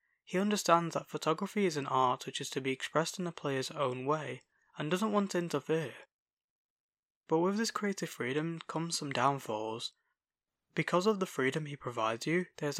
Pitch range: 130-170 Hz